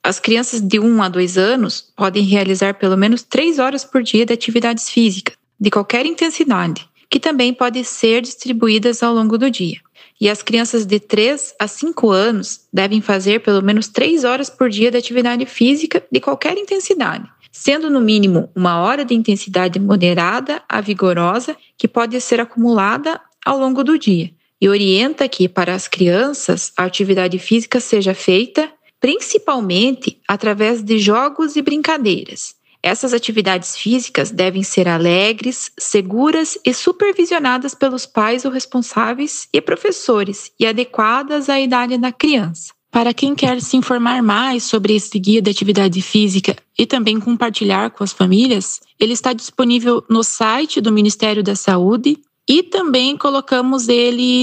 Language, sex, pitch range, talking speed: Portuguese, female, 205-260 Hz, 155 wpm